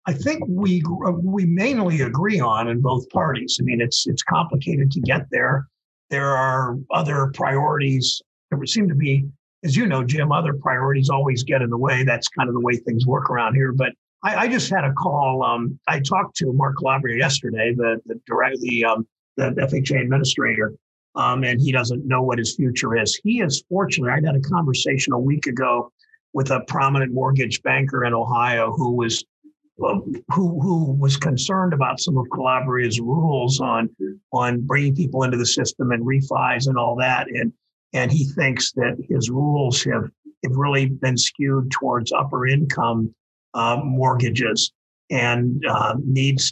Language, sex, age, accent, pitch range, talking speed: English, male, 50-69, American, 125-145 Hz, 175 wpm